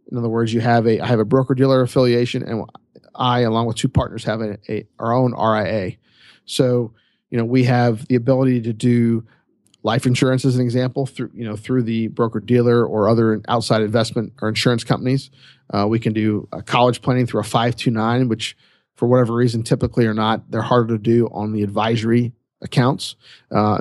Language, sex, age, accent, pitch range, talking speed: English, male, 40-59, American, 115-130 Hz, 200 wpm